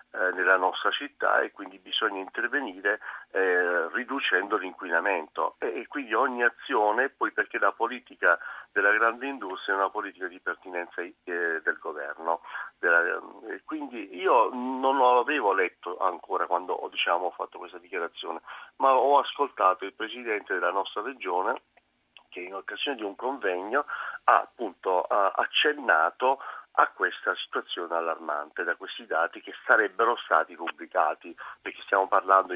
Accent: native